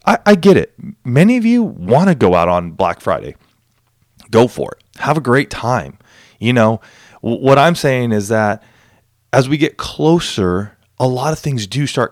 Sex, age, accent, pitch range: male, 30-49, American, 115-160 Hz